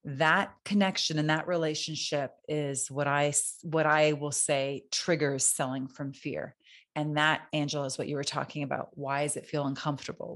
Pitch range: 145-165 Hz